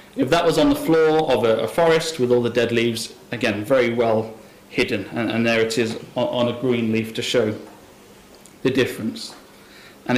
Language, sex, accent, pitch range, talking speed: English, male, British, 120-155 Hz, 185 wpm